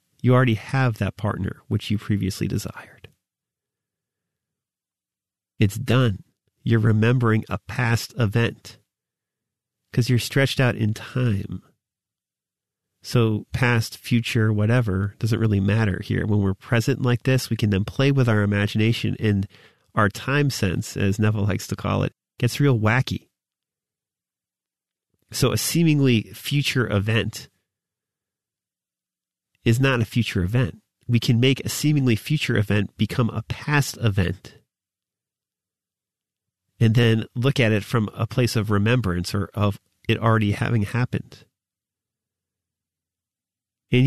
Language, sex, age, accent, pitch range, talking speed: English, male, 40-59, American, 100-120 Hz, 125 wpm